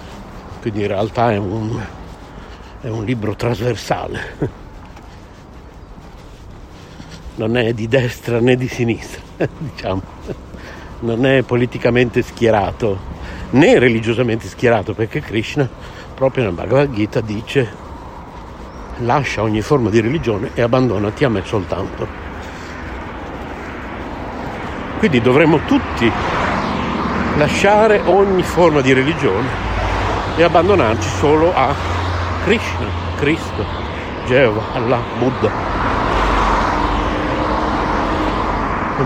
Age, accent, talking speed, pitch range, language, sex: 60-79, native, 90 wpm, 95-125 Hz, Italian, male